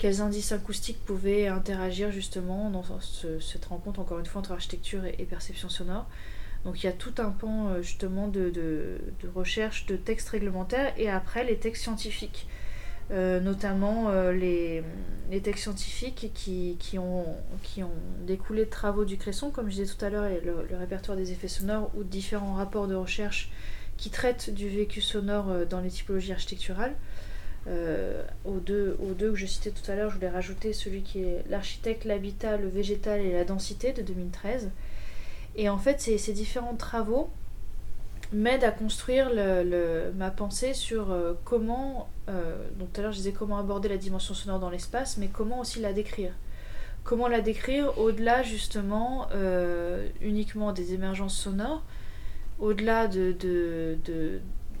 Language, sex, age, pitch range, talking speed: French, female, 30-49, 180-215 Hz, 170 wpm